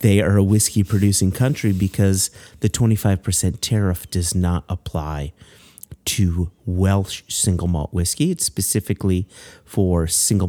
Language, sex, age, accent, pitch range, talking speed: English, male, 30-49, American, 90-110 Hz, 120 wpm